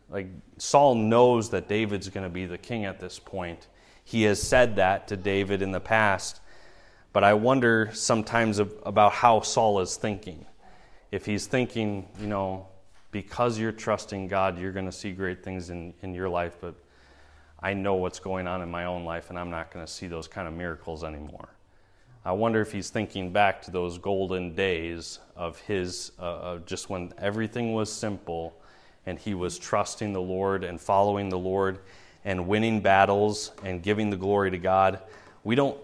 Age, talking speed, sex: 30-49, 185 wpm, male